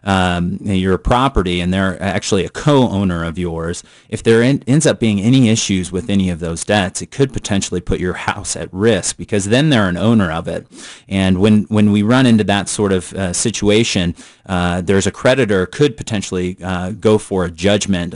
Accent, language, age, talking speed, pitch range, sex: American, English, 30-49, 200 wpm, 90-105 Hz, male